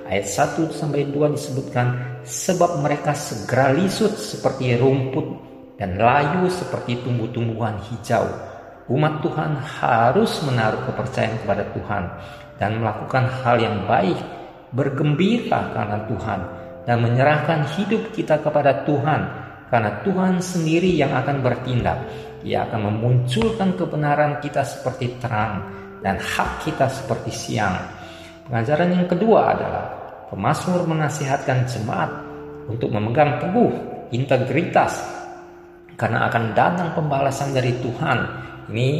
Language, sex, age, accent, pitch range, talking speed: Indonesian, male, 40-59, native, 115-155 Hz, 110 wpm